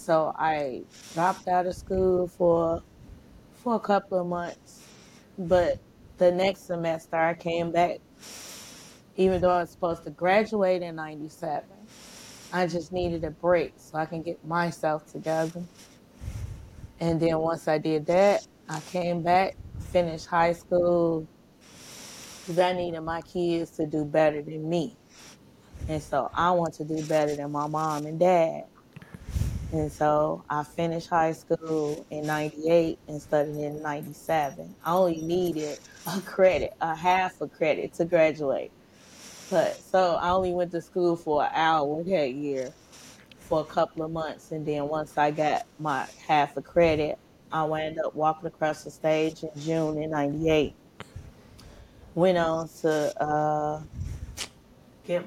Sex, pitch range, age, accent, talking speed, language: female, 155-175 Hz, 20-39, American, 150 wpm, English